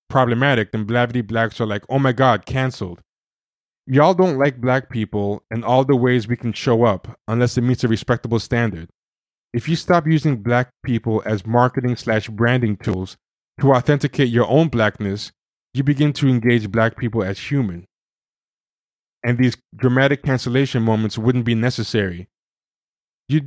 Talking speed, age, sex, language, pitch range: 160 wpm, 20-39, male, English, 110-130 Hz